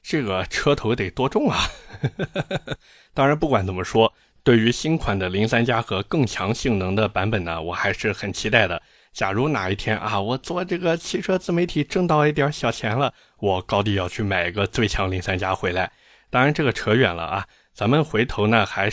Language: Chinese